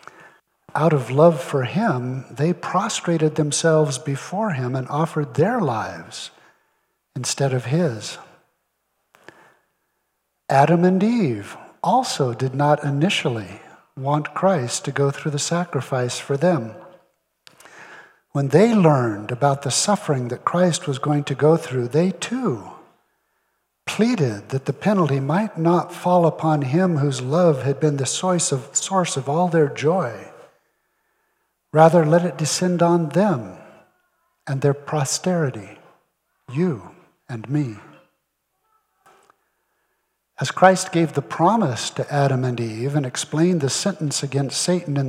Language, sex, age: English, male, 60-79